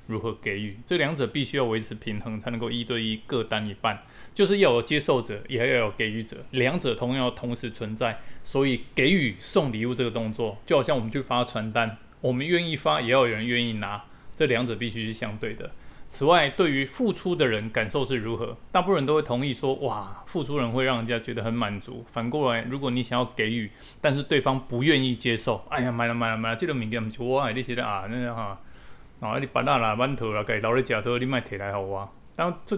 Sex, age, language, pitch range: male, 20-39, Chinese, 110-135 Hz